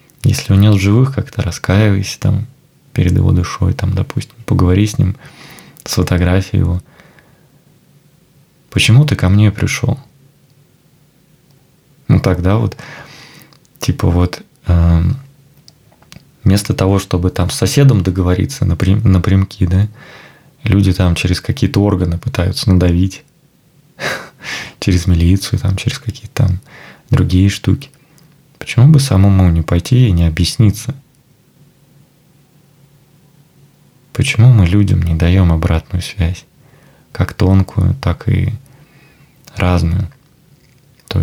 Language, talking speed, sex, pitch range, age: Russian, 110 wpm, male, 95-145 Hz, 20-39